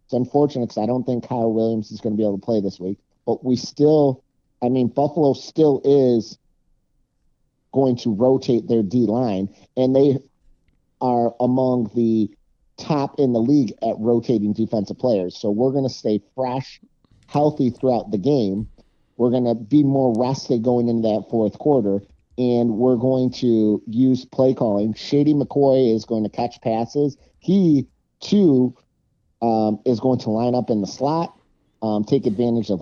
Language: English